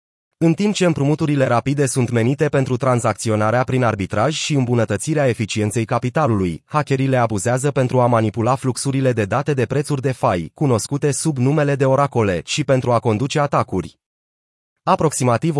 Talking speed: 150 wpm